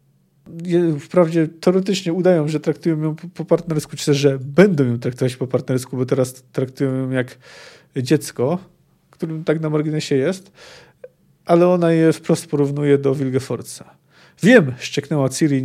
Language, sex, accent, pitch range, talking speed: Polish, male, native, 135-175 Hz, 145 wpm